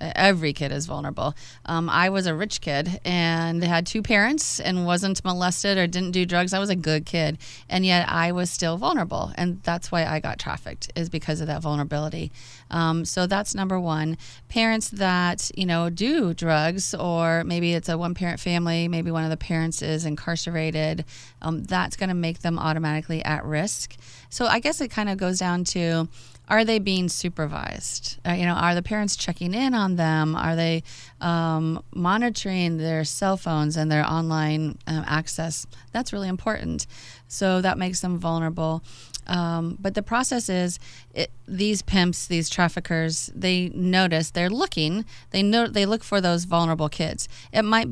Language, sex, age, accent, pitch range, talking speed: English, female, 30-49, American, 155-185 Hz, 180 wpm